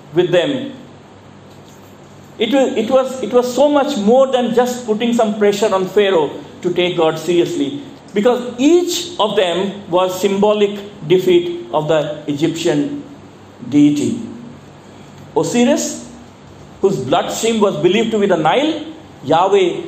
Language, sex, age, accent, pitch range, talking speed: English, male, 50-69, Indian, 190-265 Hz, 120 wpm